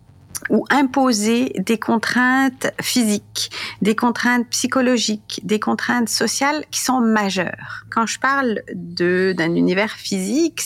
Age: 50-69